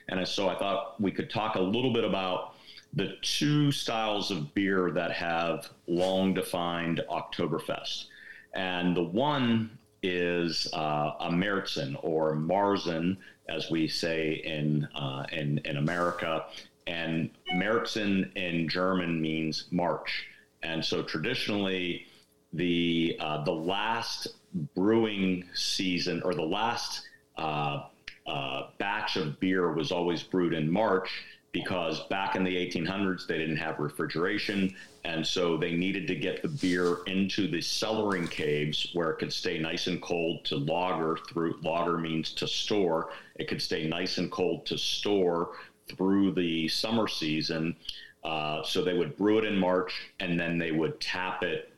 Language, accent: English, American